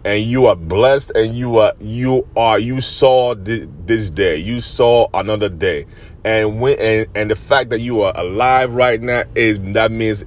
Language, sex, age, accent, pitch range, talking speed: English, male, 30-49, American, 110-150 Hz, 195 wpm